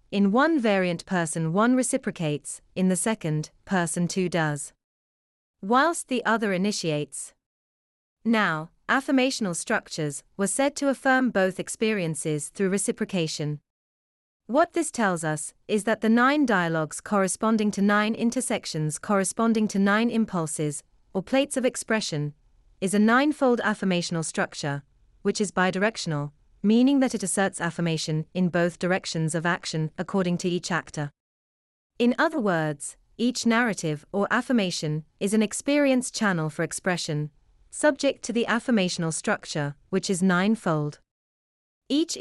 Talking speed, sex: 130 wpm, female